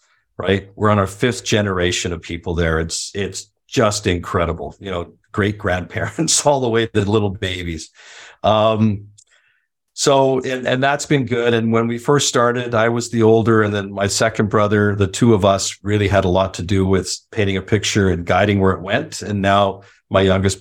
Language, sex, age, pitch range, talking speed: English, male, 50-69, 95-110 Hz, 200 wpm